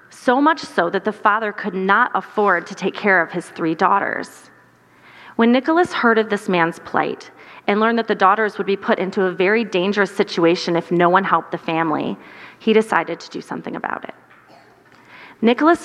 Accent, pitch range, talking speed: American, 190-240 Hz, 190 wpm